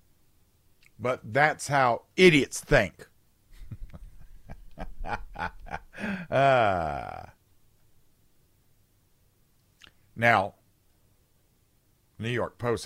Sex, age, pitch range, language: male, 50-69, 90-120 Hz, English